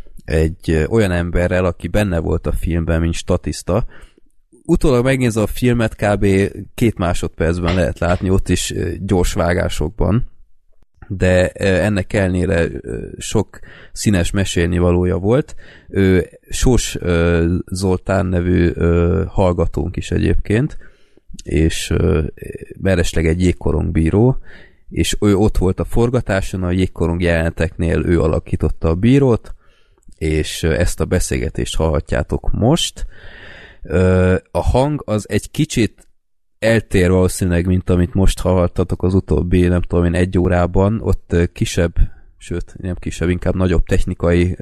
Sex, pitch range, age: male, 85-95 Hz, 30-49